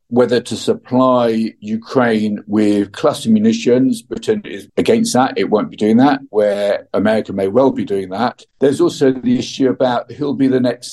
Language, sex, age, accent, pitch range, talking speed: English, male, 50-69, British, 115-165 Hz, 175 wpm